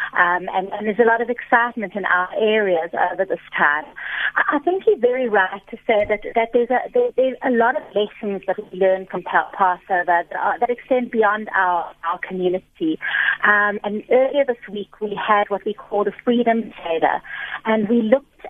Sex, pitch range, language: female, 190-240 Hz, English